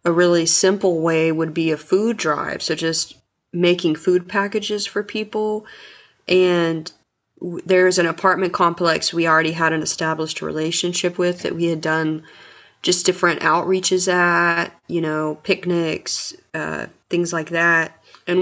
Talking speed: 145 wpm